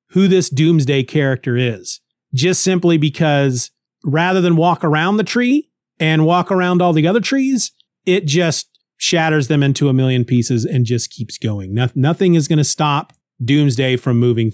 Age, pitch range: 40-59, 135-175 Hz